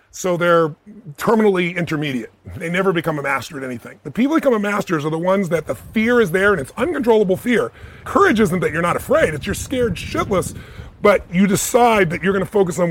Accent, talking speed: American, 220 wpm